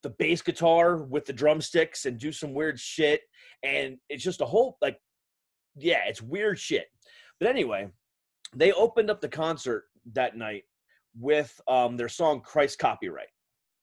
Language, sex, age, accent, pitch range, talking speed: English, male, 30-49, American, 125-180 Hz, 155 wpm